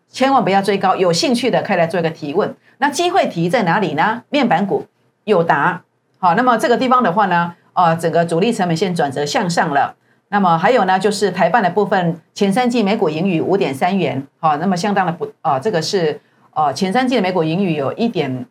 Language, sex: Chinese, female